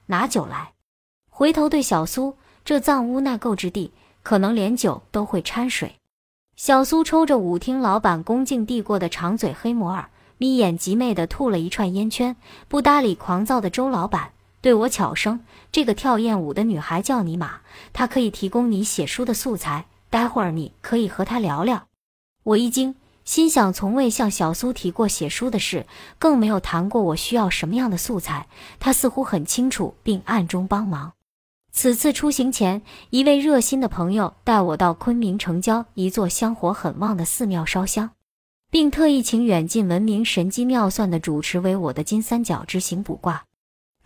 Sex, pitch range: male, 180-250 Hz